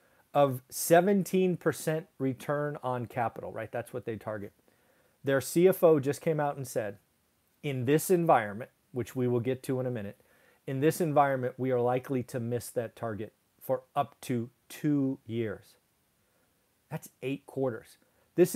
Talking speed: 150 wpm